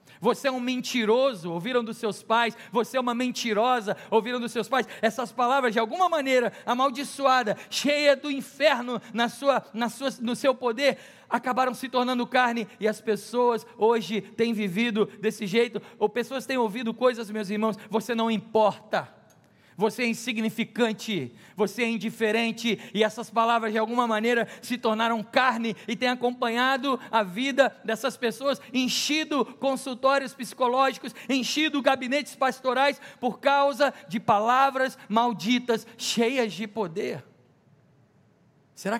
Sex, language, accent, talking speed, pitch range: male, Portuguese, Brazilian, 140 wpm, 205-255 Hz